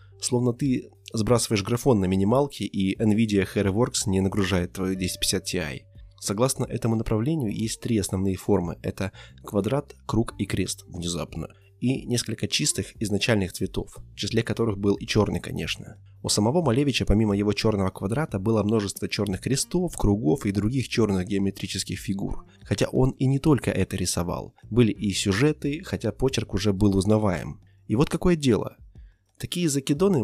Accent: native